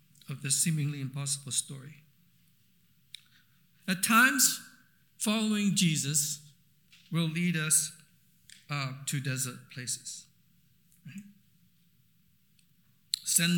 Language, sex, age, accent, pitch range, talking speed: English, male, 60-79, American, 145-180 Hz, 75 wpm